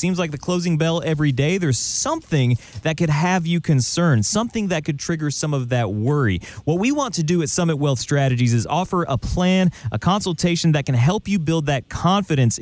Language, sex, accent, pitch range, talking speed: English, male, American, 120-165 Hz, 210 wpm